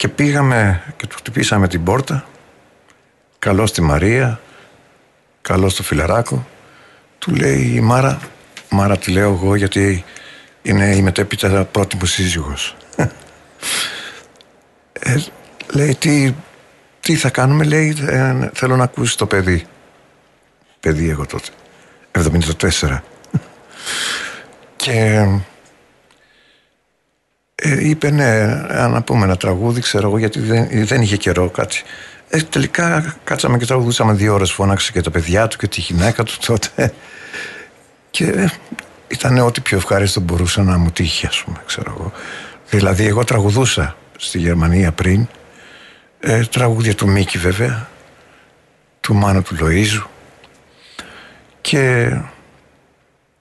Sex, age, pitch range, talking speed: male, 50-69, 90-125 Hz, 120 wpm